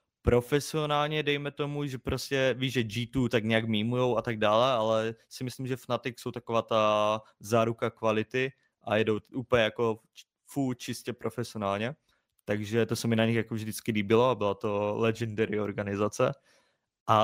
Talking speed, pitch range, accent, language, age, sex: 160 wpm, 100-120 Hz, native, Czech, 20-39, male